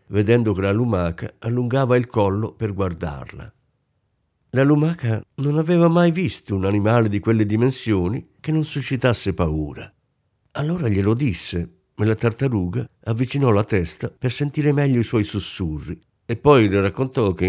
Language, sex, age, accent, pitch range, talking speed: Italian, male, 50-69, native, 95-130 Hz, 150 wpm